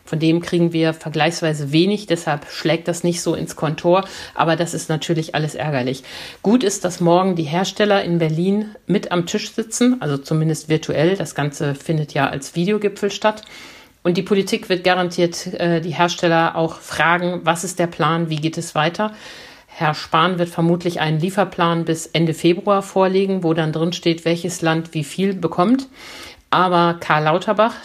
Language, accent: German, German